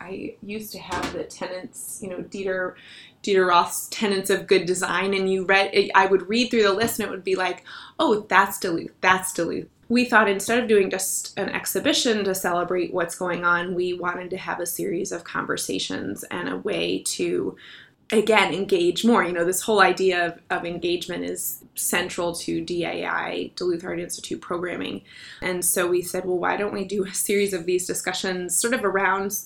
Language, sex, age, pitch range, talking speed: English, female, 20-39, 180-200 Hz, 195 wpm